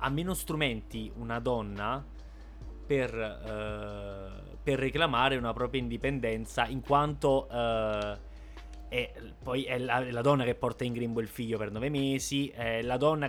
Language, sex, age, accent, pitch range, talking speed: Italian, male, 20-39, native, 110-140 Hz, 155 wpm